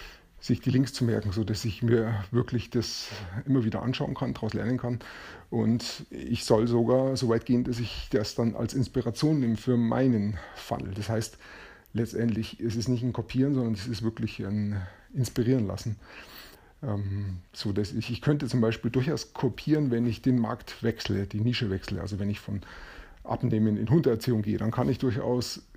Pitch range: 110-125 Hz